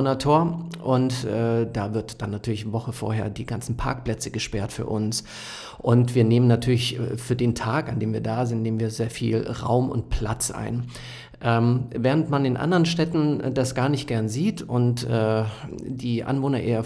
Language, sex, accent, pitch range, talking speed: German, male, German, 115-135 Hz, 180 wpm